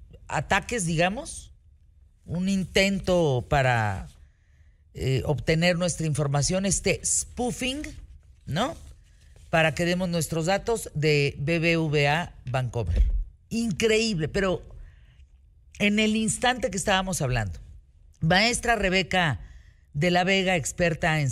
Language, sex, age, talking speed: Spanish, female, 50-69, 100 wpm